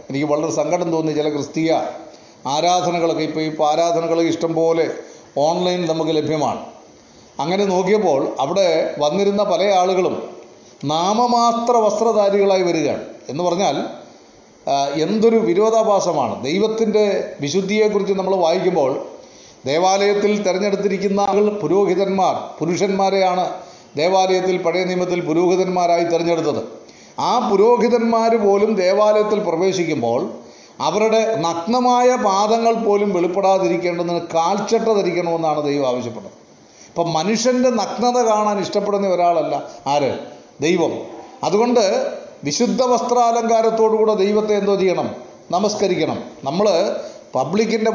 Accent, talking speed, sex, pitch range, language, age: native, 90 wpm, male, 170-215 Hz, Malayalam, 30-49